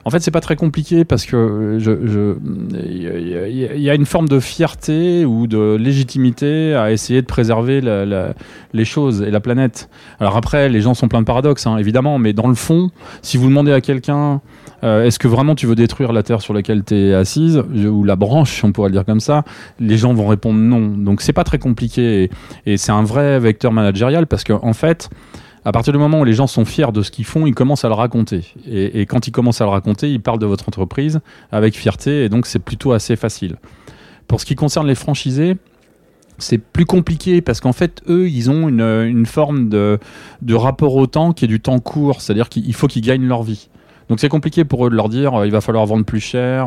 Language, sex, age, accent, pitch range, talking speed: French, male, 30-49, French, 110-140 Hz, 245 wpm